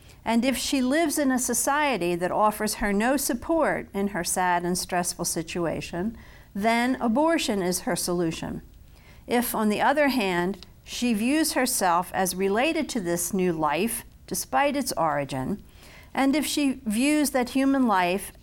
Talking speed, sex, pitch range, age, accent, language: 155 wpm, female, 185-265 Hz, 50-69, American, English